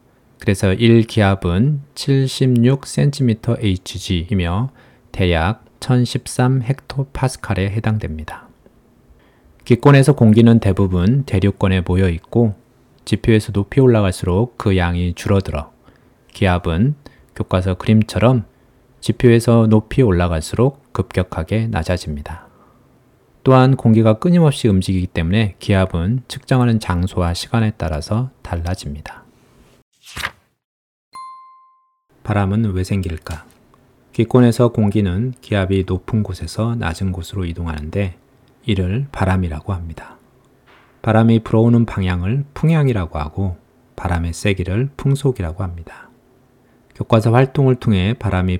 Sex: male